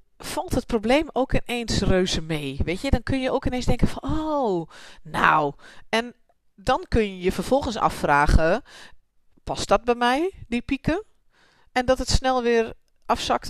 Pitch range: 170-235 Hz